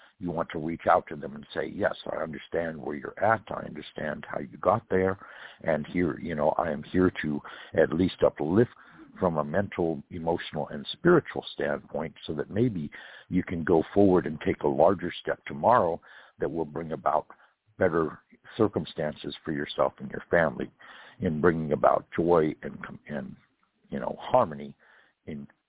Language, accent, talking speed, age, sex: English, American, 170 wpm, 60-79, male